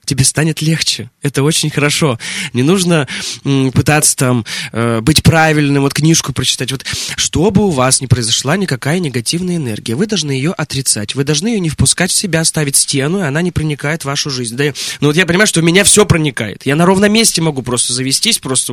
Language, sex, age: Russian, male, 20-39